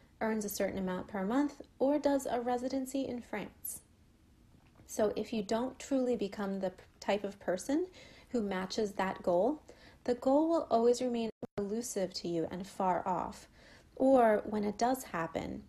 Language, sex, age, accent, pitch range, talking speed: English, female, 30-49, American, 195-245 Hz, 160 wpm